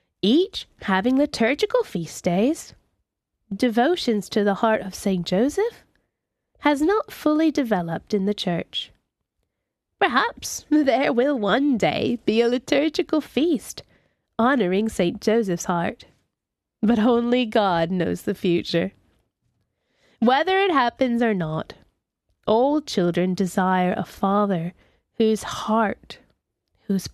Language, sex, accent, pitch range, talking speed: English, female, American, 180-240 Hz, 115 wpm